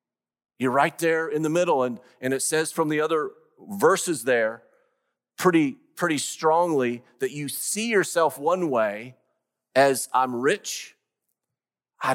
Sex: male